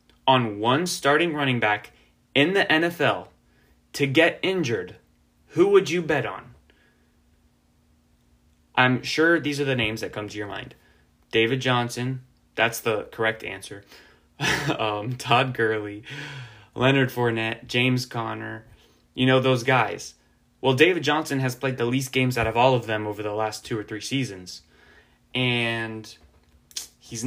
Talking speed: 145 wpm